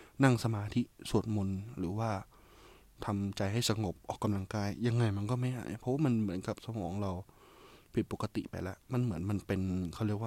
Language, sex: Thai, male